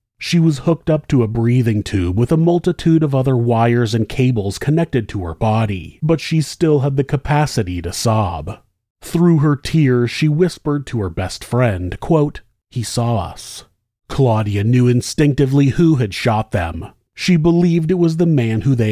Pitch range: 110-155 Hz